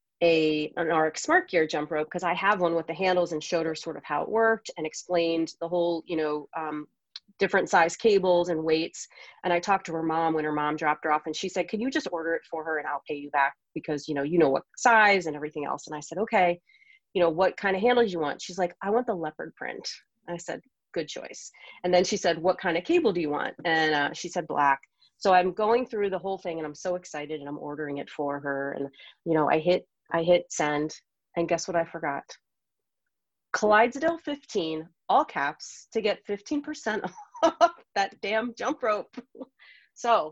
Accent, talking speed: American, 225 wpm